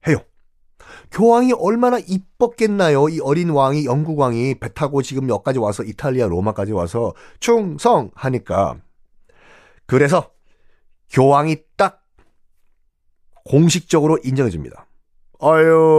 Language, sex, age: Korean, male, 40-59